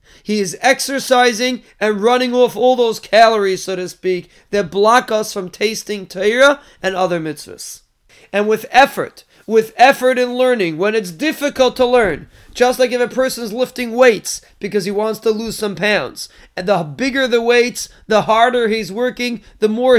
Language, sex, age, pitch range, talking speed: English, male, 30-49, 210-250 Hz, 175 wpm